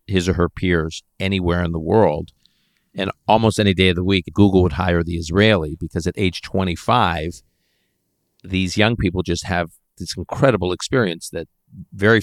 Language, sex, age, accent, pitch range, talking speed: English, male, 50-69, American, 85-100 Hz, 165 wpm